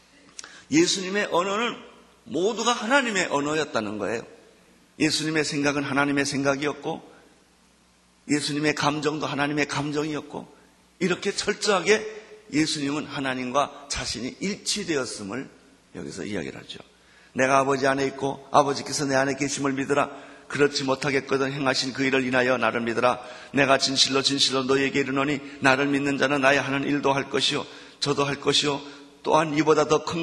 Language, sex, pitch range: Korean, male, 135-150 Hz